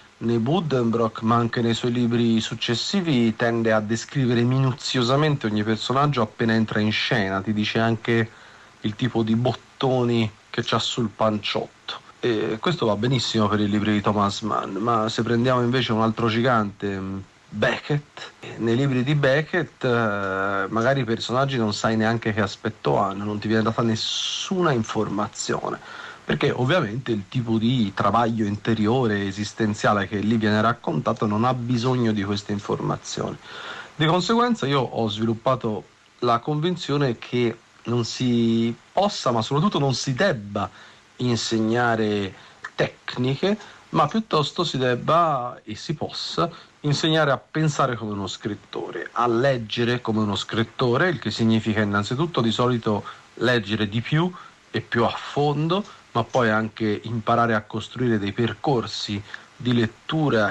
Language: Italian